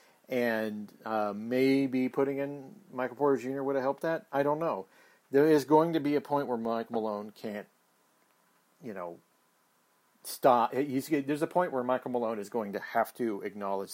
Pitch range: 110-140 Hz